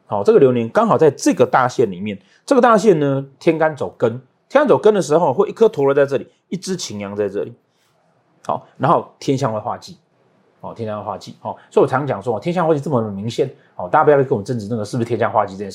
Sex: male